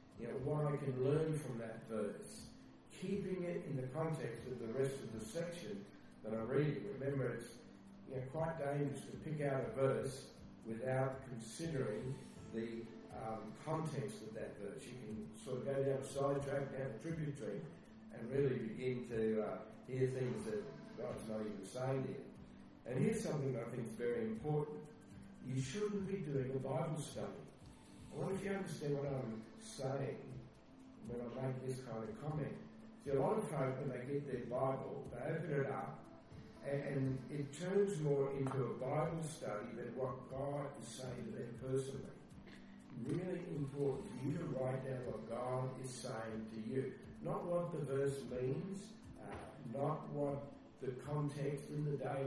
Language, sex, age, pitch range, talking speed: English, male, 50-69, 125-145 Hz, 170 wpm